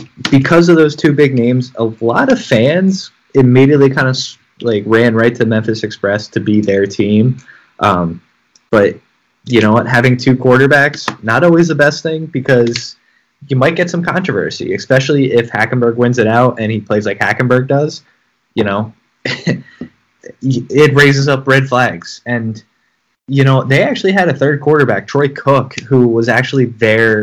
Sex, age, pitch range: male, 20-39, 110-140 Hz